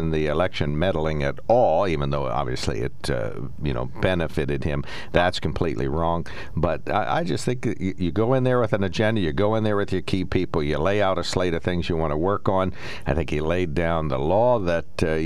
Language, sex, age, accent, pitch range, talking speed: English, male, 60-79, American, 75-100 Hz, 235 wpm